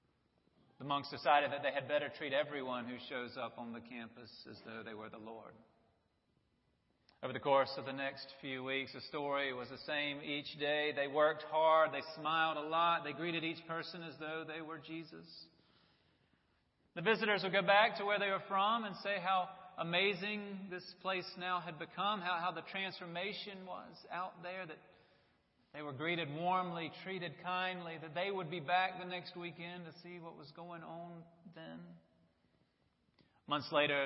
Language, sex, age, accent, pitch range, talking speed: English, male, 40-59, American, 135-180 Hz, 180 wpm